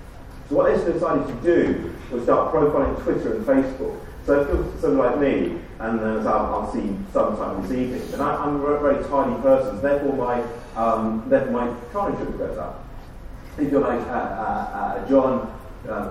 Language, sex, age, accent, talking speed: English, male, 40-59, British, 190 wpm